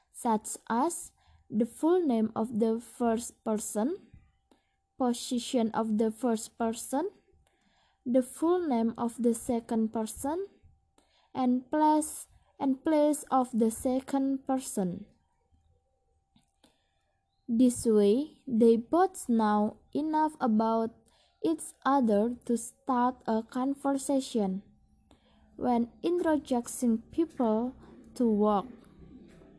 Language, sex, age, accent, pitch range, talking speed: English, female, 20-39, Indonesian, 225-290 Hz, 95 wpm